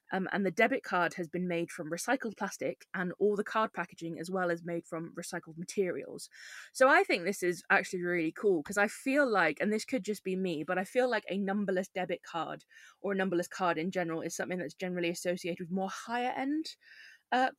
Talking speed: 220 wpm